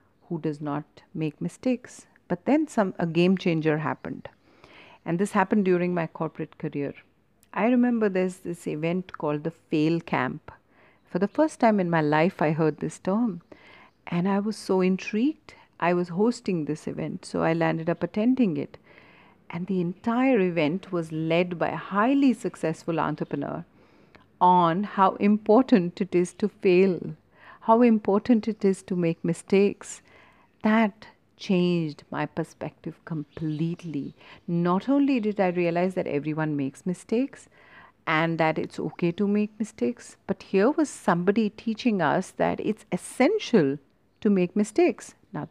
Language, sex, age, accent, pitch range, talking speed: English, female, 50-69, Indian, 165-215 Hz, 150 wpm